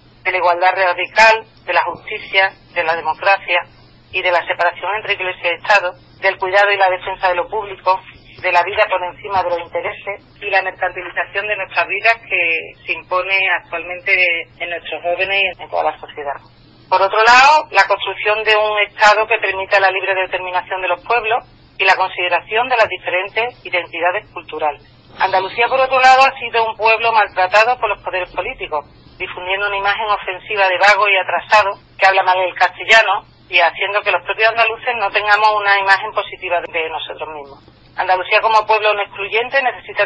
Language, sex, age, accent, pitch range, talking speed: Spanish, female, 40-59, Spanish, 175-210 Hz, 185 wpm